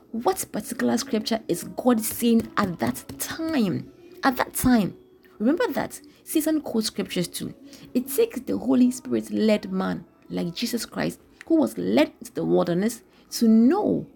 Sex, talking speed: female, 155 wpm